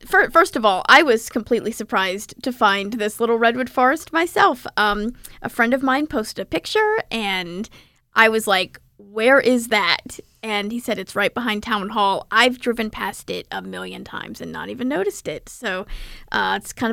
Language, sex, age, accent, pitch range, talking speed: English, female, 10-29, American, 200-255 Hz, 190 wpm